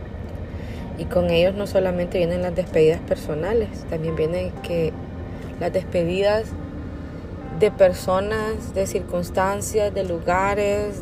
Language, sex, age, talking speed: Spanish, female, 30-49, 105 wpm